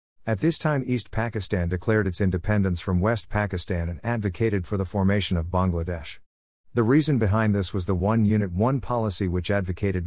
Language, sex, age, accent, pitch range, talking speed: English, male, 50-69, American, 90-110 Hz, 180 wpm